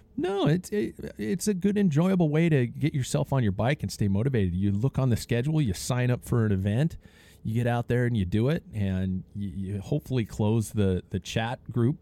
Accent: American